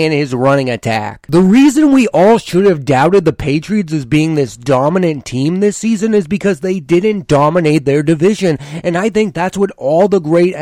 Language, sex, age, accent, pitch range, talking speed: English, male, 30-49, American, 145-190 Hz, 200 wpm